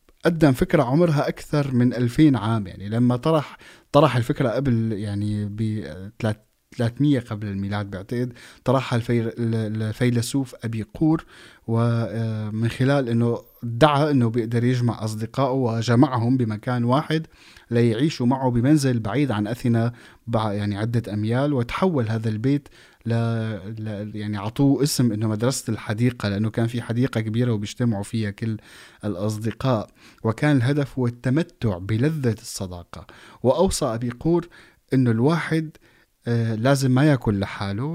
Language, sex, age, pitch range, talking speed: Arabic, male, 20-39, 110-130 Hz, 120 wpm